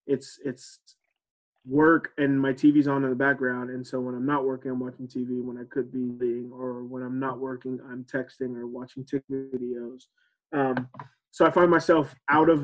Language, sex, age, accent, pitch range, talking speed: English, male, 20-39, American, 125-140 Hz, 200 wpm